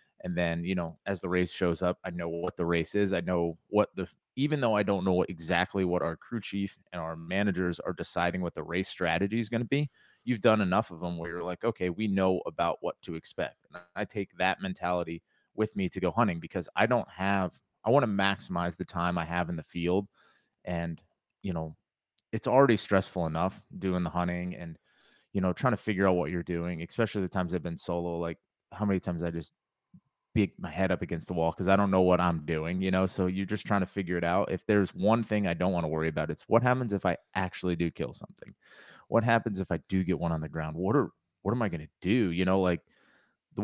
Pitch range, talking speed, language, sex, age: 85-100 Hz, 245 wpm, English, male, 30-49